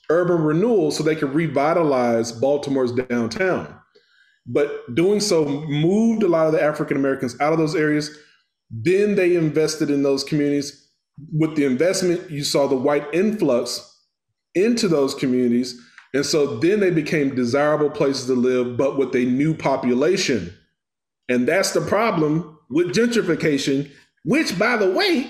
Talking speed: 150 wpm